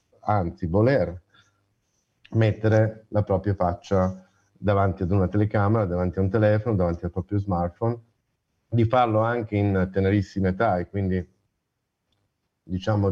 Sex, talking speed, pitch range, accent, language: male, 125 wpm, 90-105 Hz, native, Italian